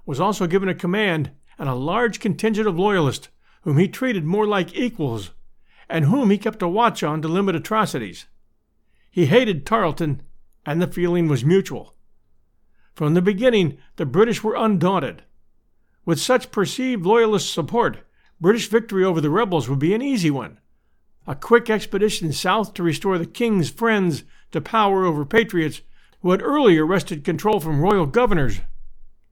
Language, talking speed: English, 160 wpm